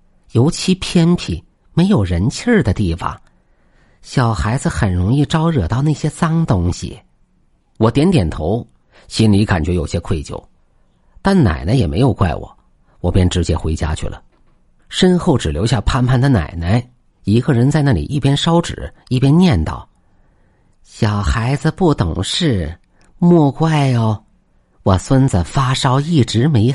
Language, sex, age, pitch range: Chinese, male, 50-69, 95-145 Hz